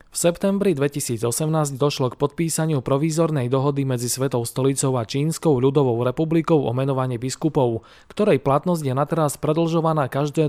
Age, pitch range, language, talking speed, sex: 20-39, 130-160 Hz, Slovak, 135 wpm, male